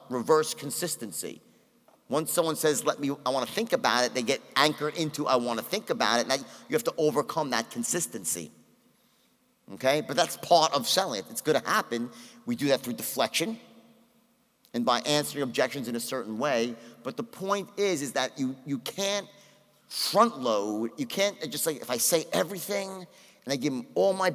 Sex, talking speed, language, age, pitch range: male, 190 wpm, English, 50-69, 125-200 Hz